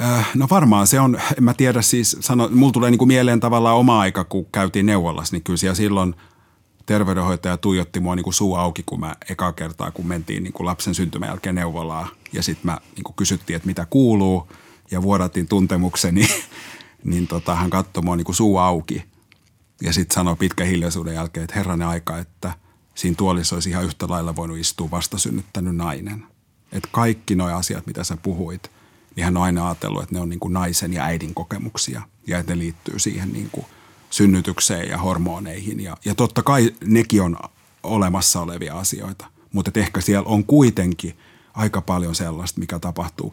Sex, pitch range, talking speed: male, 90-105 Hz, 170 wpm